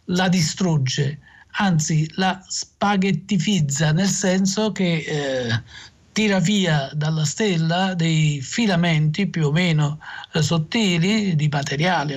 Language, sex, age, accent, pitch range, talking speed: Italian, male, 50-69, native, 150-185 Hz, 110 wpm